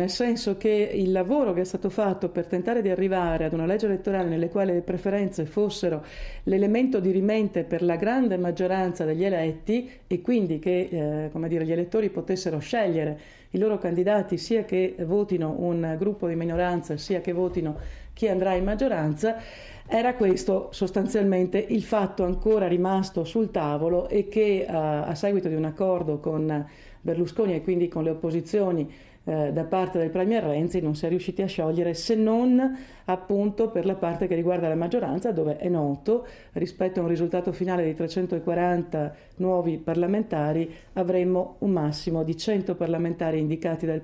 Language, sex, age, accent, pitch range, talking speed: Italian, female, 50-69, native, 160-195 Hz, 165 wpm